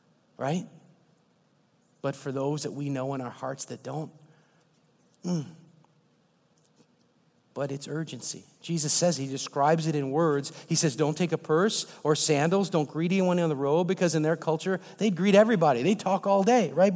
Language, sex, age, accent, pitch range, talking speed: English, male, 40-59, American, 140-170 Hz, 175 wpm